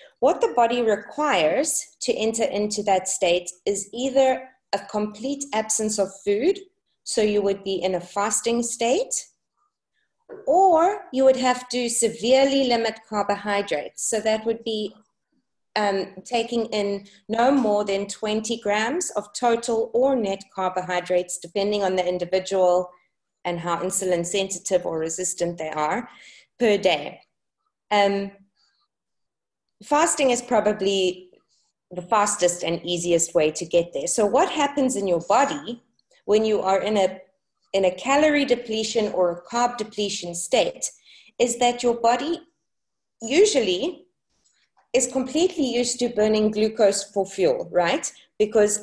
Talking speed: 135 wpm